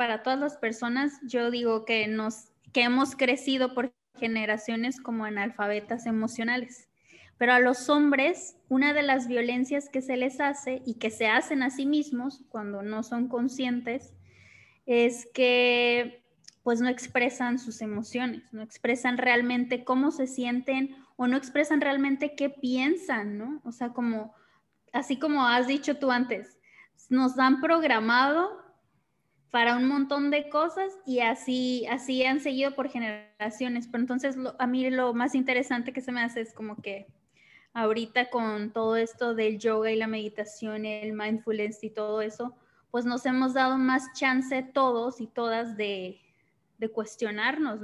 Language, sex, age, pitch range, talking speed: Spanish, female, 20-39, 225-265 Hz, 155 wpm